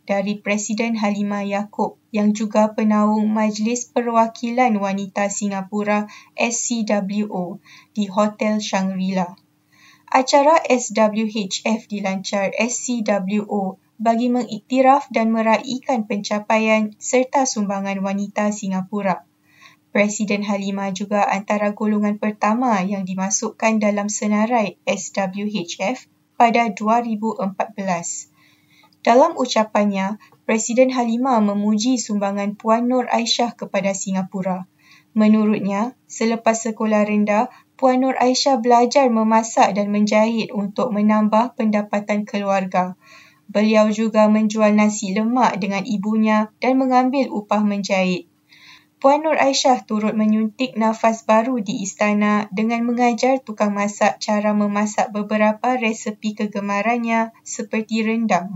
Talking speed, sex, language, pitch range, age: 100 wpm, female, Malay, 200-230 Hz, 20-39